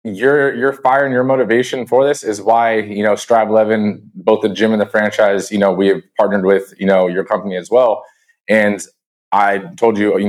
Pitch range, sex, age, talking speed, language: 100-115 Hz, male, 20-39, 210 wpm, English